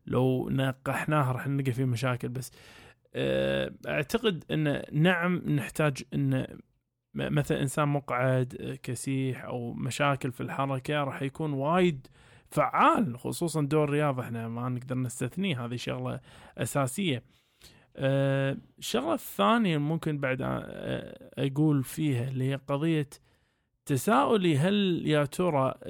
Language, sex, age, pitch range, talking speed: Arabic, male, 20-39, 130-150 Hz, 110 wpm